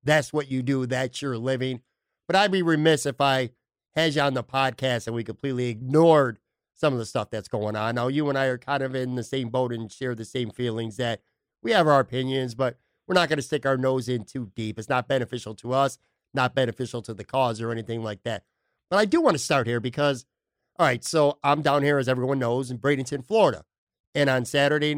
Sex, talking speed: male, 235 wpm